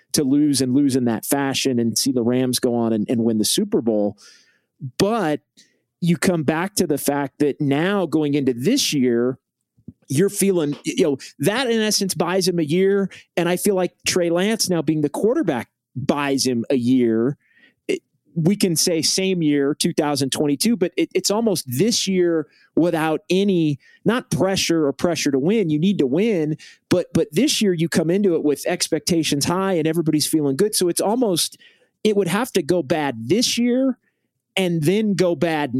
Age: 30-49